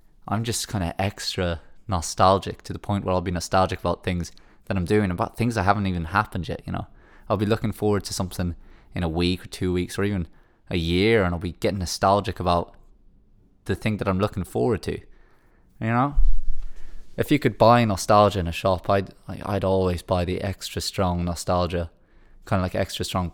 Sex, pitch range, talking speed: male, 90-105 Hz, 205 wpm